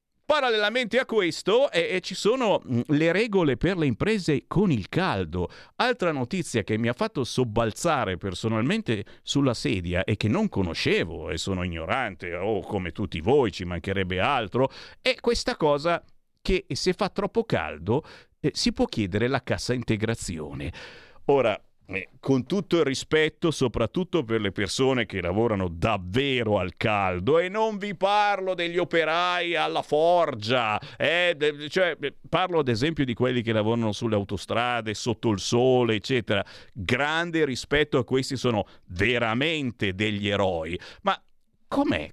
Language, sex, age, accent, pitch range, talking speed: Italian, male, 50-69, native, 110-175 Hz, 140 wpm